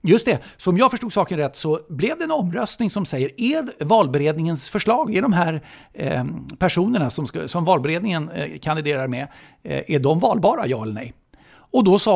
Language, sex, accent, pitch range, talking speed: English, male, Swedish, 130-185 Hz, 195 wpm